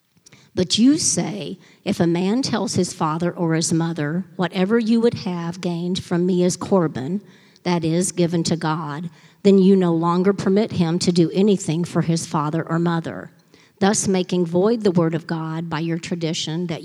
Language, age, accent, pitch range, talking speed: English, 50-69, American, 170-195 Hz, 180 wpm